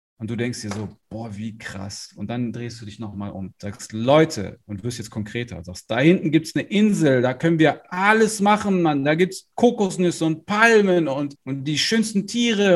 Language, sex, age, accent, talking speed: German, male, 40-59, German, 210 wpm